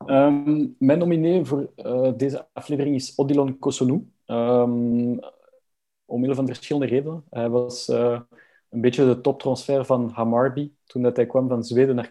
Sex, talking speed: male, 140 wpm